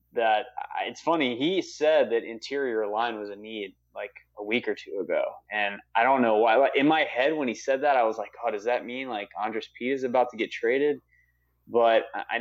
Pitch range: 105-140 Hz